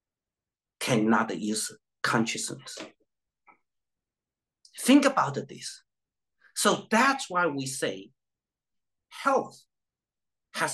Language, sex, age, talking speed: English, male, 50-69, 75 wpm